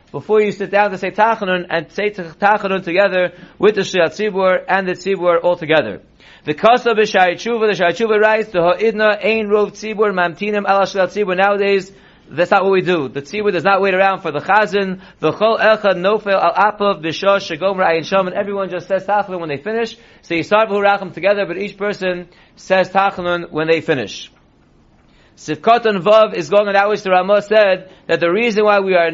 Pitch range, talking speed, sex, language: 180-215 Hz, 200 wpm, male, English